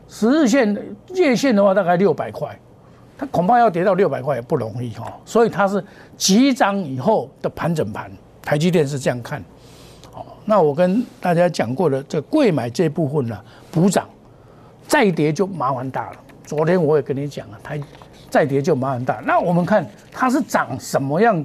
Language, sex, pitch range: Chinese, male, 140-195 Hz